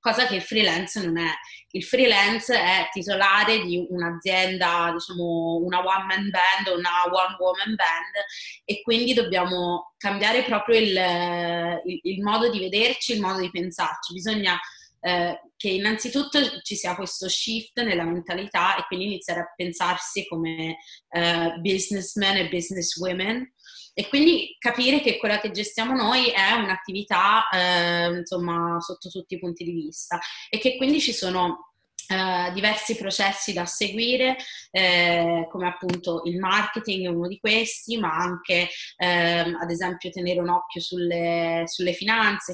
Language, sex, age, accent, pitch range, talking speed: Italian, female, 20-39, native, 175-210 Hz, 150 wpm